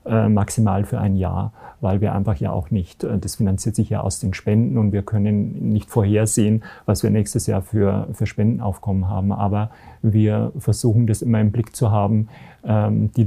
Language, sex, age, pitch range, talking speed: German, male, 40-59, 105-115 Hz, 180 wpm